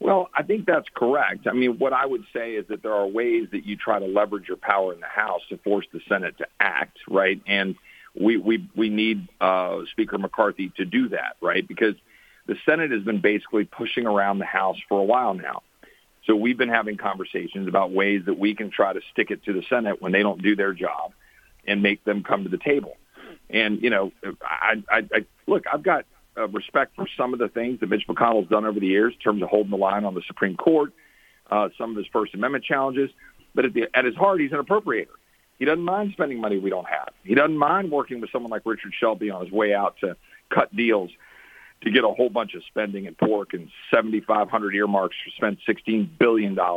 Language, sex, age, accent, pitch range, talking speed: English, male, 50-69, American, 100-130 Hz, 230 wpm